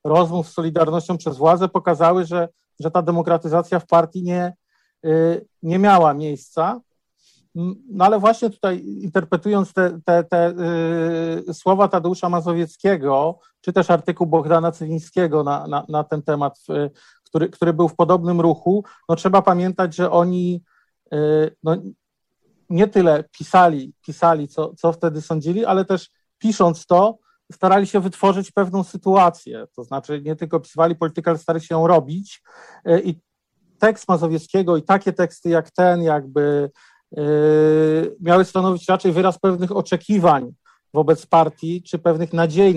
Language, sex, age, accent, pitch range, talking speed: Polish, male, 40-59, native, 155-180 Hz, 135 wpm